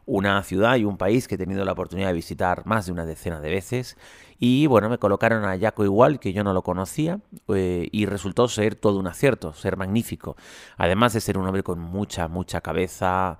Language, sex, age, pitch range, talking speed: Spanish, male, 30-49, 90-110 Hz, 215 wpm